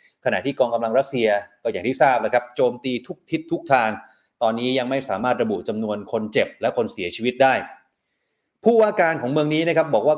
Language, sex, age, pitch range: Thai, male, 20-39, 115-155 Hz